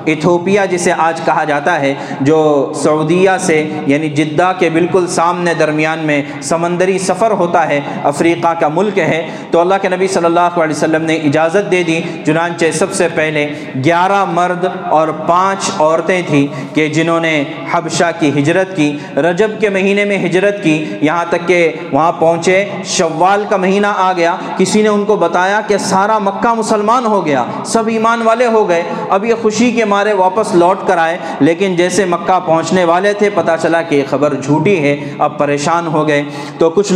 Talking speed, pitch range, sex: 175 wpm, 160-195 Hz, male